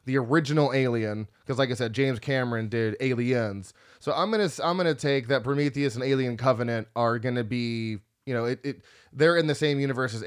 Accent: American